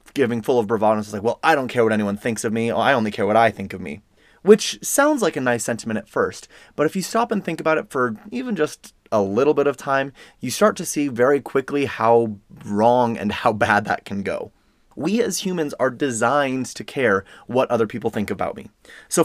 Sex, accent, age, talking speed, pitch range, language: male, American, 30-49, 235 wpm, 110-145 Hz, English